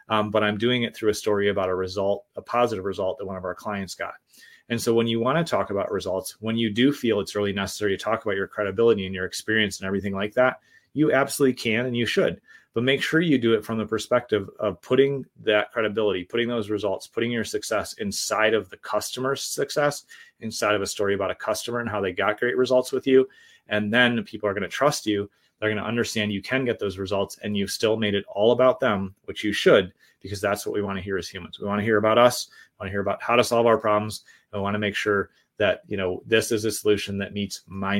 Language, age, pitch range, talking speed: English, 30-49, 100-120 Hz, 255 wpm